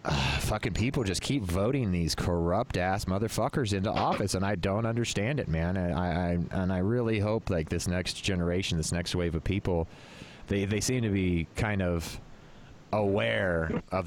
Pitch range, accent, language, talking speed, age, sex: 85-115 Hz, American, English, 175 wpm, 30-49, male